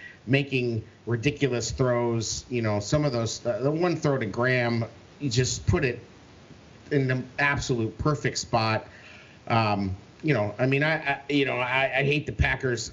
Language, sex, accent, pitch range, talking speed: English, male, American, 120-145 Hz, 165 wpm